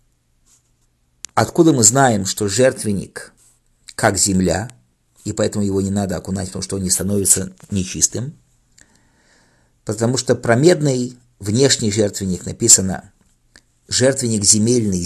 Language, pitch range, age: English, 95-130 Hz, 50-69